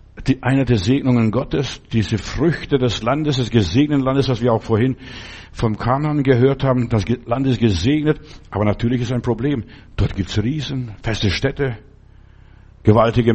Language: German